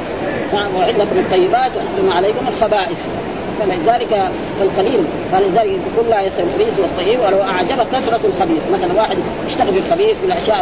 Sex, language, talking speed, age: female, Arabic, 135 wpm, 30-49